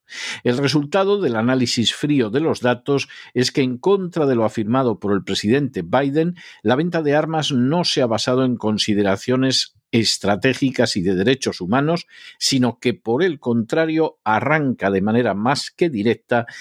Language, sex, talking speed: Spanish, male, 165 wpm